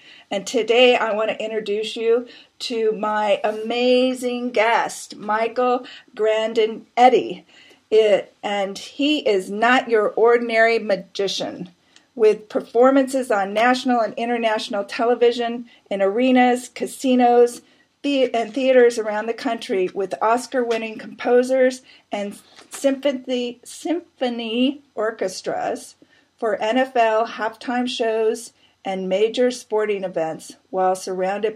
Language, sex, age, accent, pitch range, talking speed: English, female, 40-59, American, 205-245 Hz, 105 wpm